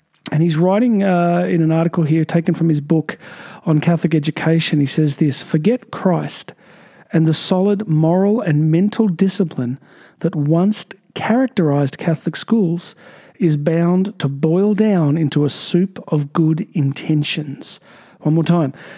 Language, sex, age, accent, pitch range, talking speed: English, male, 40-59, Australian, 160-190 Hz, 145 wpm